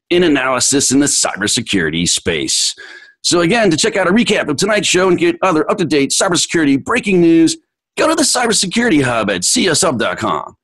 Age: 40-59